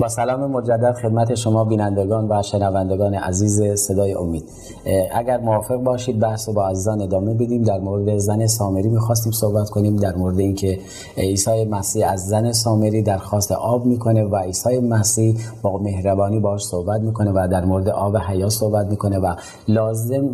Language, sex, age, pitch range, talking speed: Persian, male, 30-49, 100-115 Hz, 170 wpm